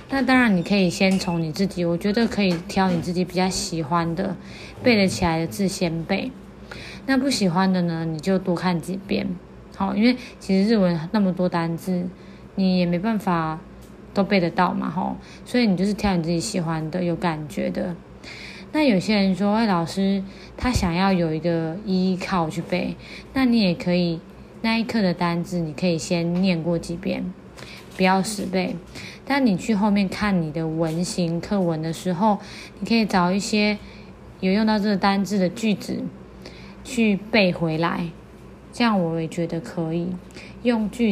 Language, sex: Chinese, female